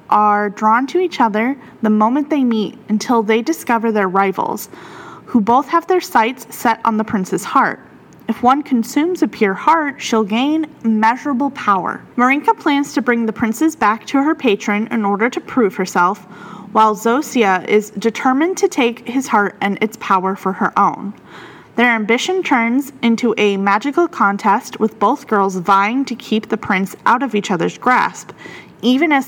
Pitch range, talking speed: 210-275 Hz, 175 wpm